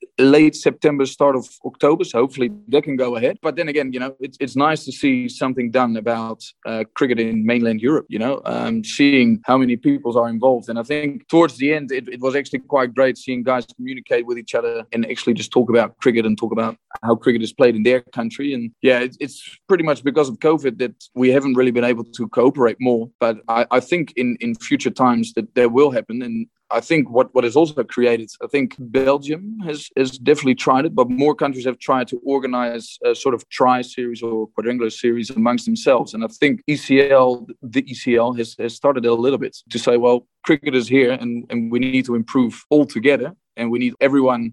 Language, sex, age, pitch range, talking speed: English, male, 20-39, 120-140 Hz, 220 wpm